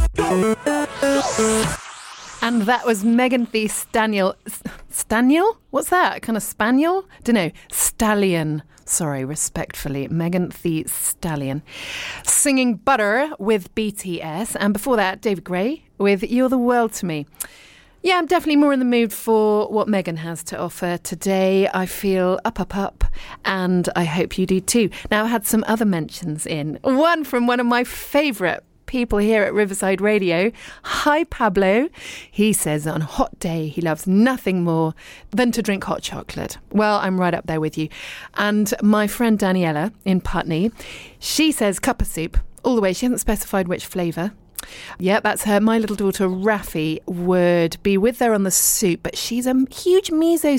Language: English